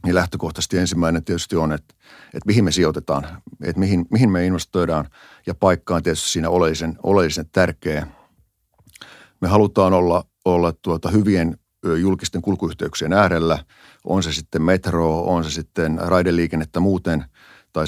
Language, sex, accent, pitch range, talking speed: Finnish, male, native, 80-90 Hz, 140 wpm